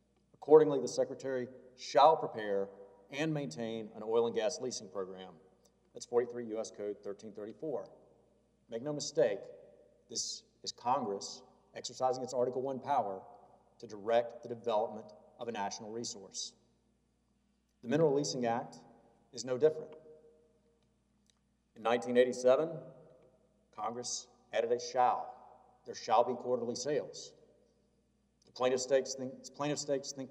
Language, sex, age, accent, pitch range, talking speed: English, male, 50-69, American, 125-155 Hz, 115 wpm